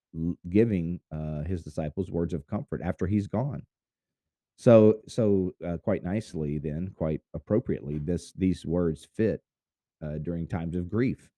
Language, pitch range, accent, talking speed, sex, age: English, 80-100 Hz, American, 140 wpm, male, 40-59